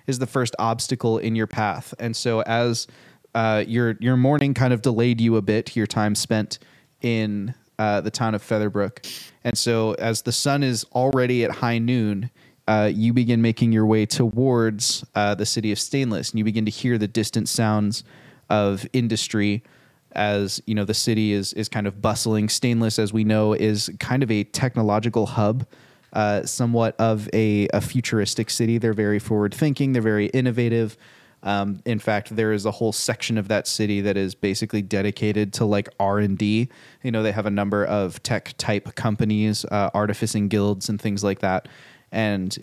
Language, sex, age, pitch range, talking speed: English, male, 20-39, 105-120 Hz, 180 wpm